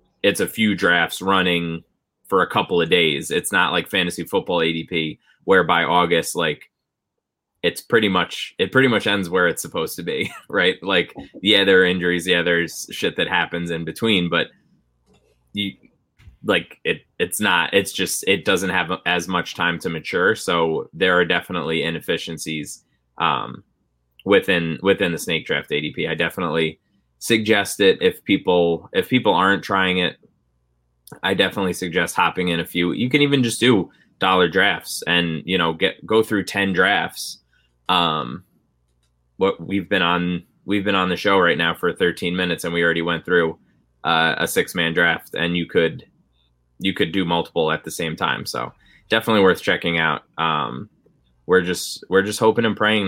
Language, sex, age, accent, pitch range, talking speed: English, male, 20-39, American, 80-100 Hz, 175 wpm